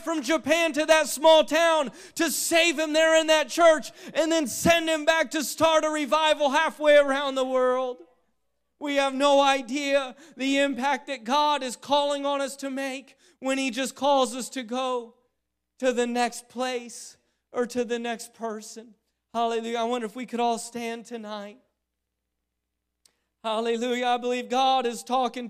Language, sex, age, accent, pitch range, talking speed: English, male, 40-59, American, 240-285 Hz, 165 wpm